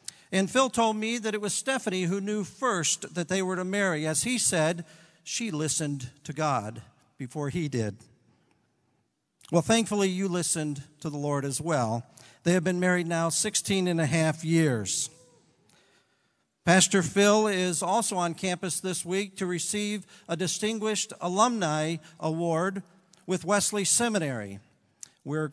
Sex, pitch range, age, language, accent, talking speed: male, 155-195 Hz, 50-69, English, American, 150 wpm